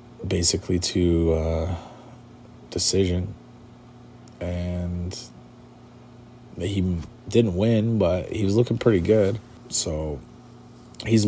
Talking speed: 85 wpm